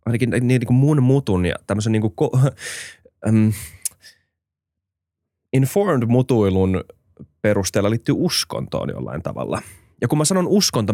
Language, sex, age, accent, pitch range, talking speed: Finnish, male, 20-39, native, 95-125 Hz, 120 wpm